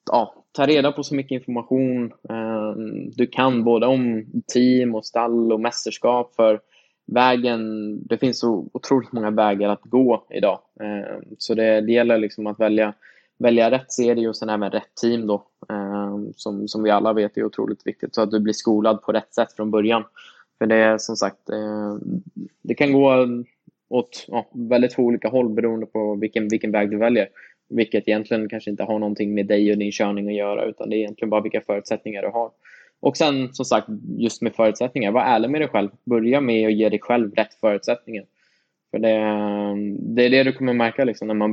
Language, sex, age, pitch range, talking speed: Swedish, male, 20-39, 105-120 Hz, 200 wpm